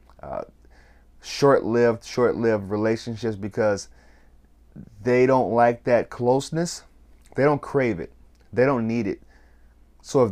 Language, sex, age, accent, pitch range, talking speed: English, male, 30-49, American, 80-115 Hz, 115 wpm